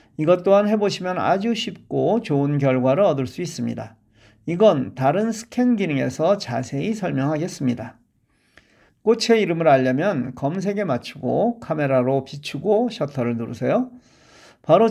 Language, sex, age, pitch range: Korean, male, 40-59, 135-190 Hz